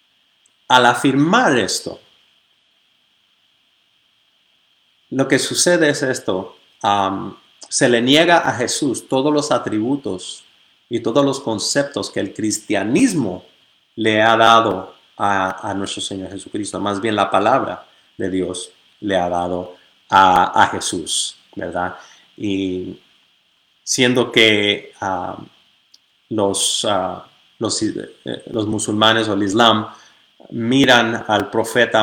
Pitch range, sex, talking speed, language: 100-120 Hz, male, 110 wpm, English